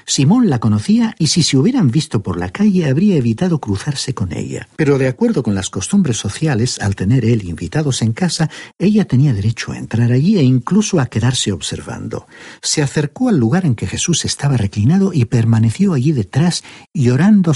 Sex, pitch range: male, 110-155 Hz